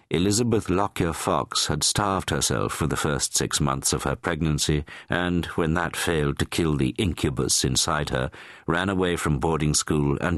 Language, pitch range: English, 70-85 Hz